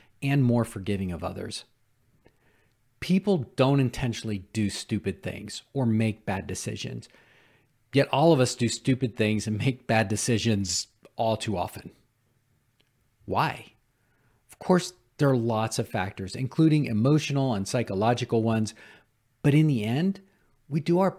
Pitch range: 110-135 Hz